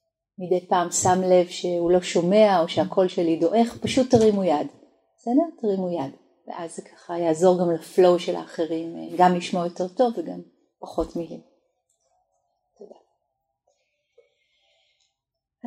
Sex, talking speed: female, 125 wpm